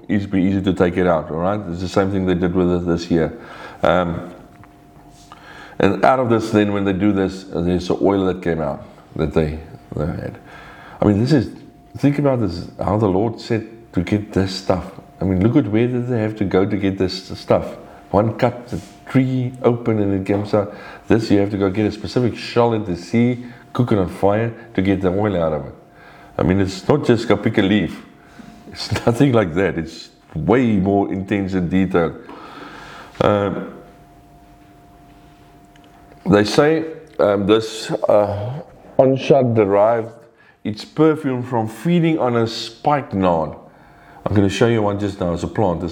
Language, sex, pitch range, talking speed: English, male, 95-115 Hz, 190 wpm